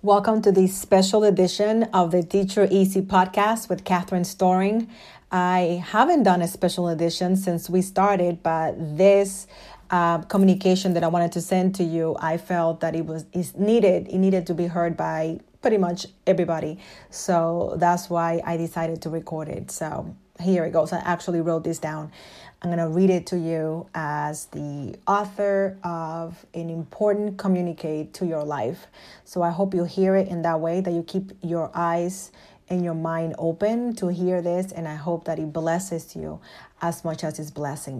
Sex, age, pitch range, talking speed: female, 30-49, 165-190 Hz, 180 wpm